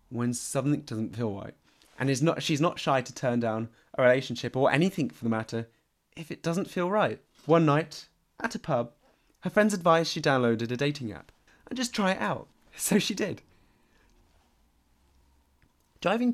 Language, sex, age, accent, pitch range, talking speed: English, male, 20-39, British, 115-165 Hz, 175 wpm